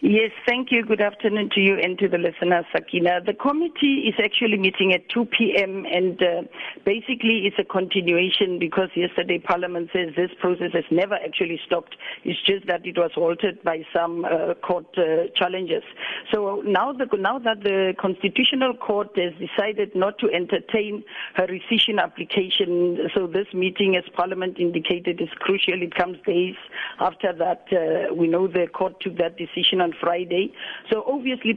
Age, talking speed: 50-69, 170 wpm